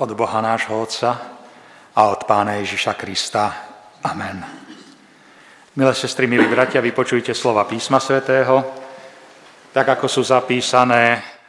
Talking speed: 115 wpm